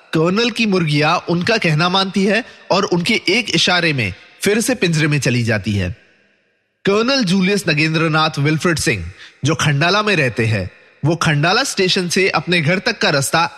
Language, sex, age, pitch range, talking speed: English, male, 30-49, 150-195 Hz, 170 wpm